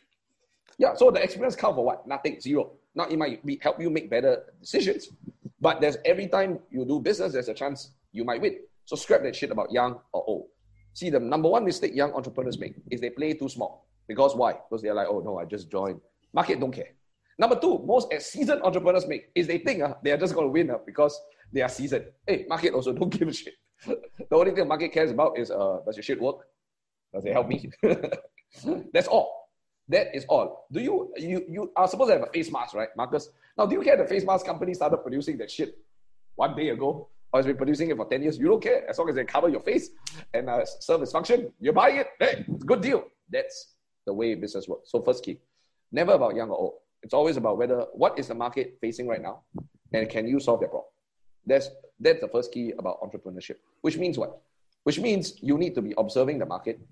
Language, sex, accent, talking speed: English, male, Malaysian, 235 wpm